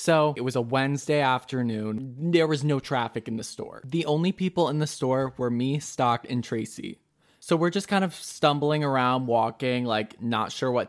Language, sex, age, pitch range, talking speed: English, male, 20-39, 115-140 Hz, 200 wpm